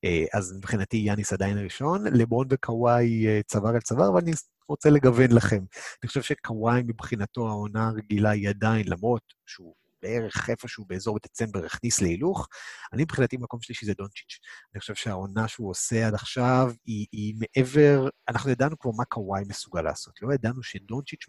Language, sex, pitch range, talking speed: Hebrew, male, 105-130 Hz, 160 wpm